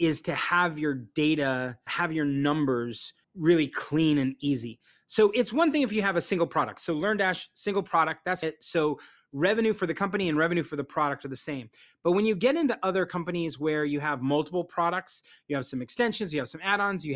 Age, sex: 30-49, male